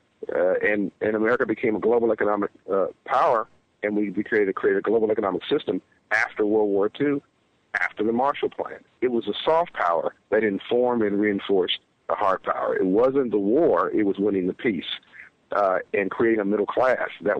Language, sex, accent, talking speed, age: English, male, American, 190 wpm, 50-69